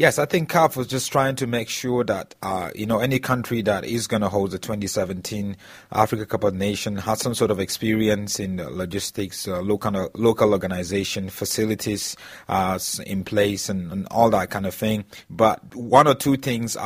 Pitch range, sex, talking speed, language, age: 95-115 Hz, male, 200 wpm, English, 30-49